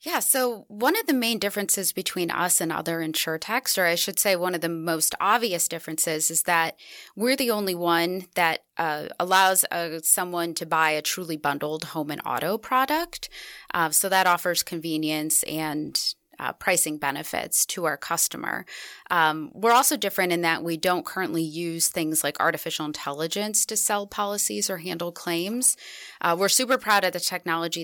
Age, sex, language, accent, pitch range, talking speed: 20-39, female, English, American, 155-190 Hz, 175 wpm